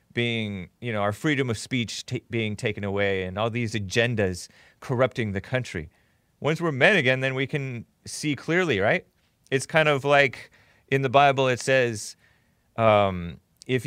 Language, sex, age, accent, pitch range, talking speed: English, male, 30-49, American, 110-145 Hz, 165 wpm